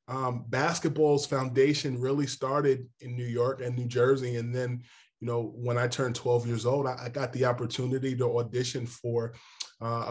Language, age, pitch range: English, 20-39, 115-130 Hz